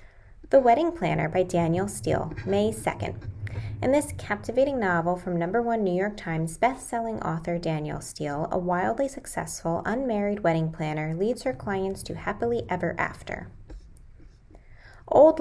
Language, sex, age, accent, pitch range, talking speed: English, female, 20-39, American, 175-235 Hz, 140 wpm